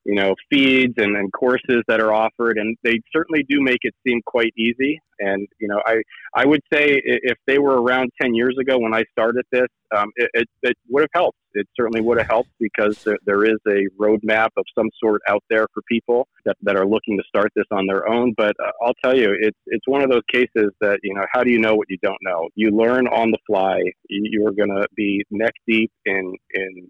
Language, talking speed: English, 235 wpm